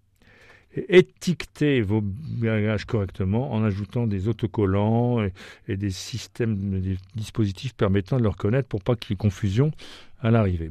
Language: French